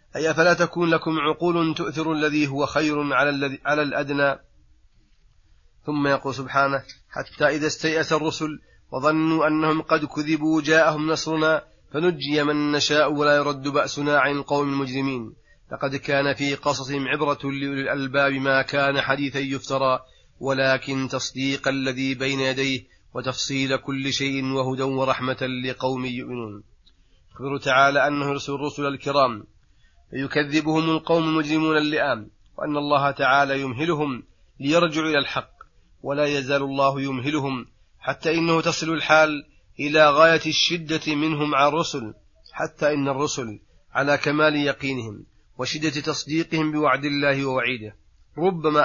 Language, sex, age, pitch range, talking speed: Arabic, male, 30-49, 135-155 Hz, 120 wpm